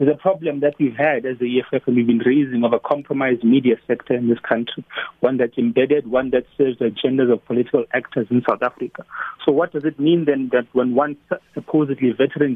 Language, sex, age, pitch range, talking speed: English, male, 30-49, 125-150 Hz, 220 wpm